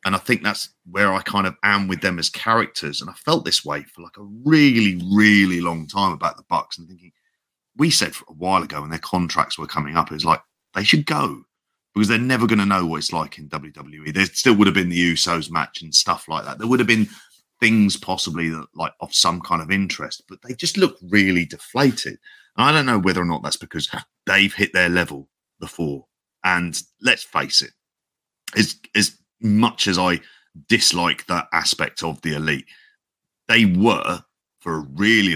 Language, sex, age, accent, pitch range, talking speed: English, male, 30-49, British, 80-105 Hz, 210 wpm